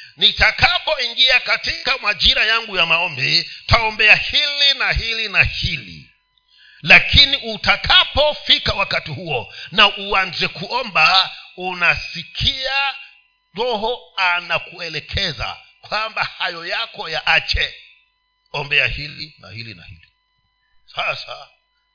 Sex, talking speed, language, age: male, 90 wpm, Swahili, 50-69